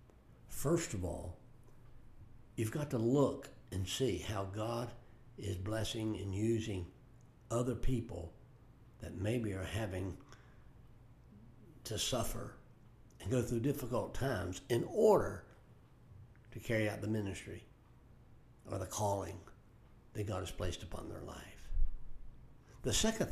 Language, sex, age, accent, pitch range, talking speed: English, male, 60-79, American, 100-120 Hz, 120 wpm